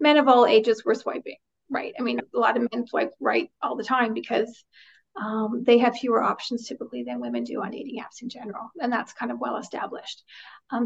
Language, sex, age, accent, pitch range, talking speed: English, female, 40-59, American, 225-265 Hz, 215 wpm